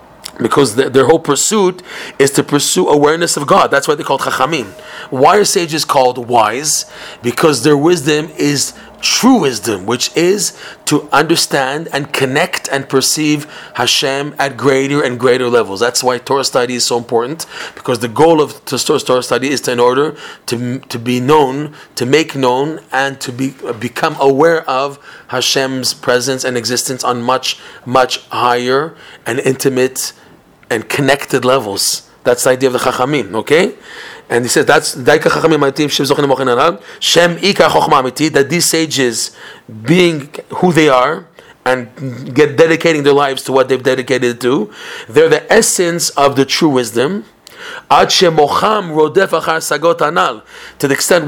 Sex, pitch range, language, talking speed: male, 130-160 Hz, English, 140 wpm